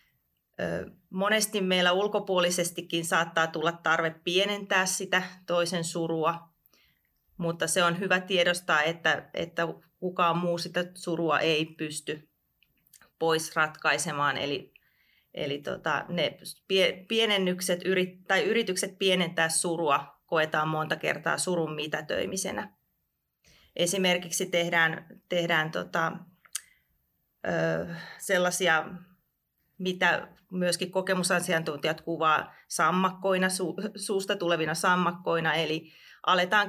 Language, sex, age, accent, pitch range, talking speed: Finnish, female, 30-49, native, 160-185 Hz, 90 wpm